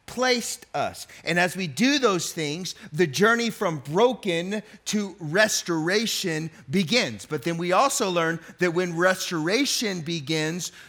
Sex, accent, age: male, American, 40-59